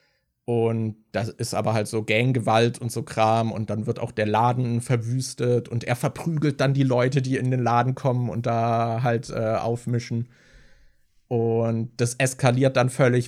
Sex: male